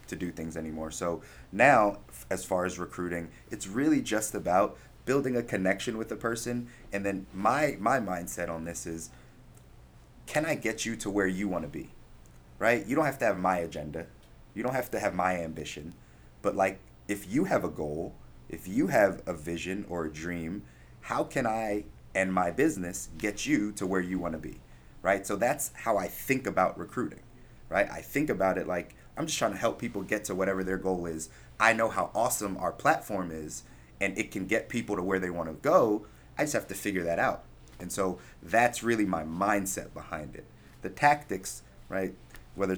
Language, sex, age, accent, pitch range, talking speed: English, male, 30-49, American, 85-105 Hz, 200 wpm